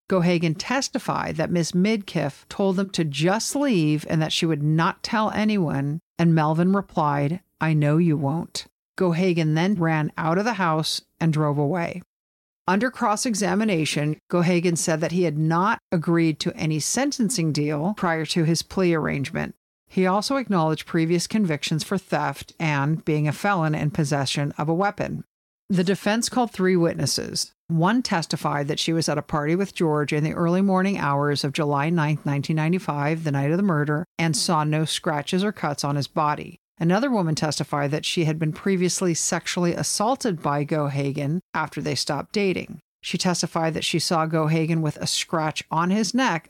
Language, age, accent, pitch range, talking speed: English, 50-69, American, 150-190 Hz, 175 wpm